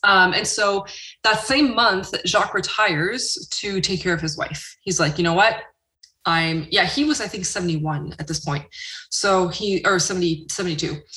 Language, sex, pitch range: English, female, 165-215 Hz